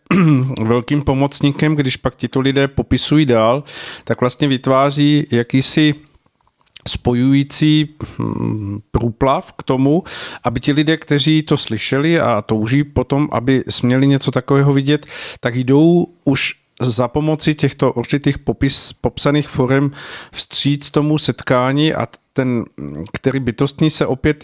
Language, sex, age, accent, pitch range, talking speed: Czech, male, 50-69, native, 115-140 Hz, 120 wpm